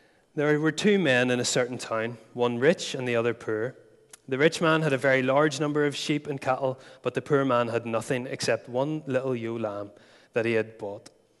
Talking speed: 215 wpm